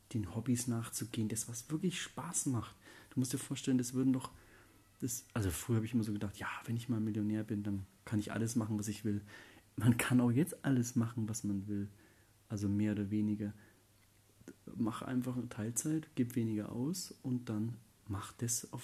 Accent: German